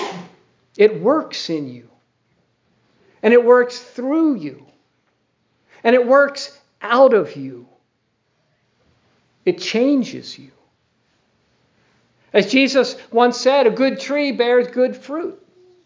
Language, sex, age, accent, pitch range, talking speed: English, male, 50-69, American, 195-275 Hz, 105 wpm